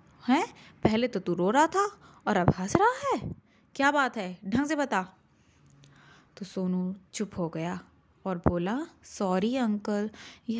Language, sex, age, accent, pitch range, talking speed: Hindi, female, 20-39, native, 195-265 Hz, 160 wpm